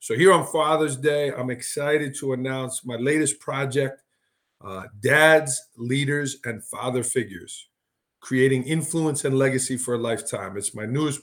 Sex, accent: male, American